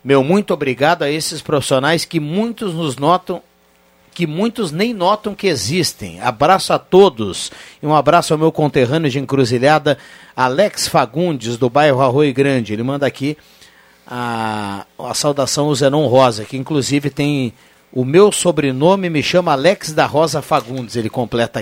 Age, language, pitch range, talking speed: 50-69, Portuguese, 135-175 Hz, 155 wpm